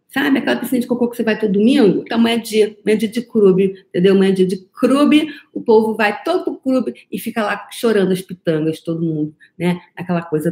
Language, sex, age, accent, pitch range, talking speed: Portuguese, female, 40-59, Brazilian, 185-285 Hz, 245 wpm